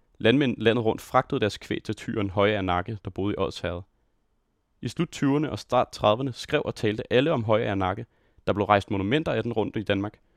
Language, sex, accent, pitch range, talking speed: Danish, male, native, 105-125 Hz, 210 wpm